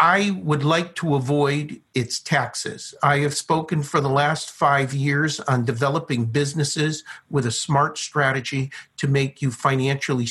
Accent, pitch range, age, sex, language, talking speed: American, 135-160 Hz, 50-69, male, English, 150 wpm